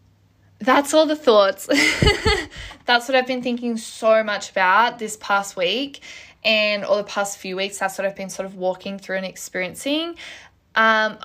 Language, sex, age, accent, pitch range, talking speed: English, female, 10-29, Australian, 195-225 Hz, 170 wpm